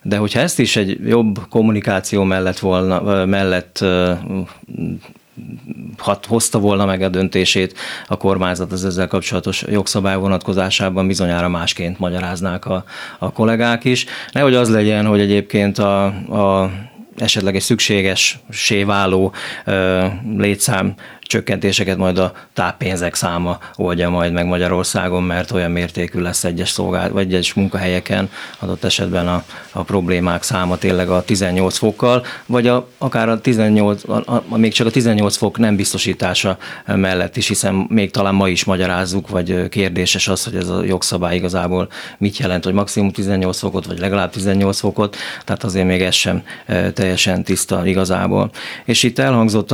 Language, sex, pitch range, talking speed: Hungarian, male, 90-105 Hz, 145 wpm